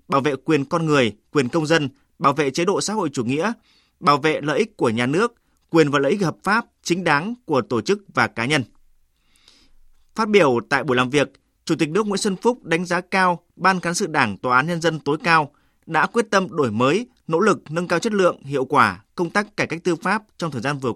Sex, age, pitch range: male, 20-39, 135-180 Hz